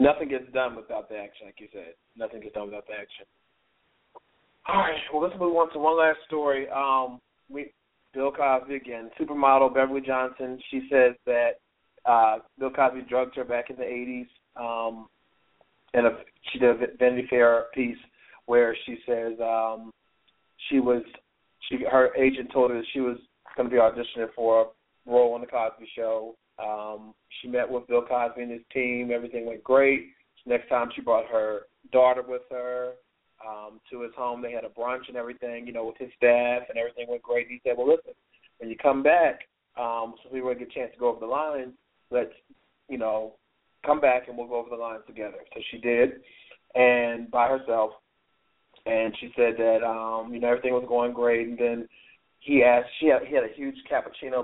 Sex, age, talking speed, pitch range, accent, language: male, 30-49, 200 wpm, 115-130 Hz, American, English